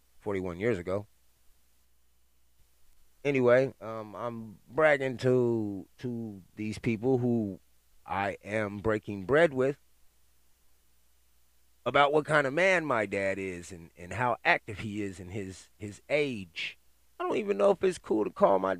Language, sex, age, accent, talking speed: English, male, 30-49, American, 145 wpm